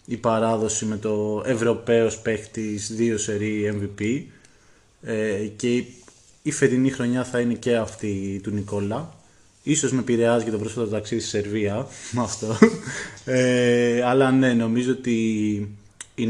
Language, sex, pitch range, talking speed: Greek, male, 105-120 Hz, 125 wpm